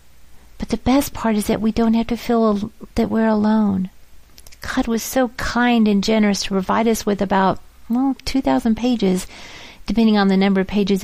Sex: female